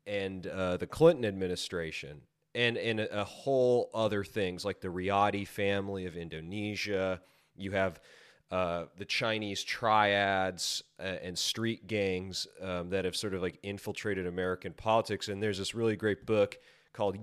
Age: 30-49